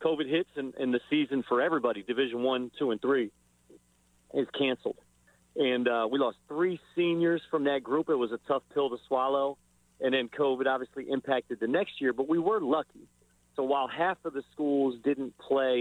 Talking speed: 195 wpm